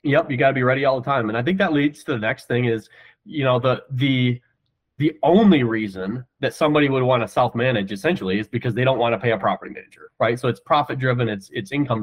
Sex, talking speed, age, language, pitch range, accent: male, 260 wpm, 30-49, English, 120-140 Hz, American